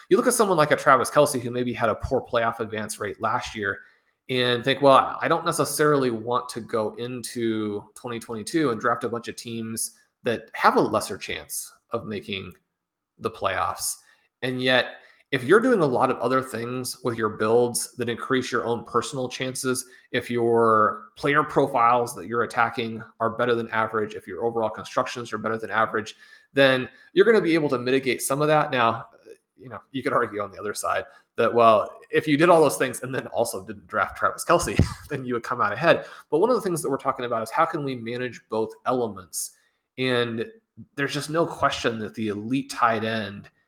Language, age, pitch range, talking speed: English, 30-49, 110-130 Hz, 205 wpm